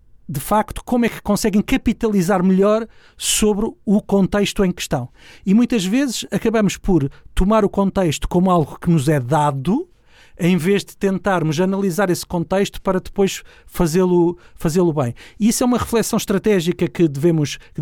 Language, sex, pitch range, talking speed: Portuguese, male, 170-215 Hz, 155 wpm